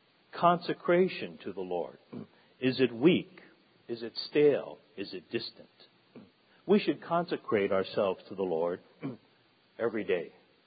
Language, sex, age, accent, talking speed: English, male, 50-69, American, 125 wpm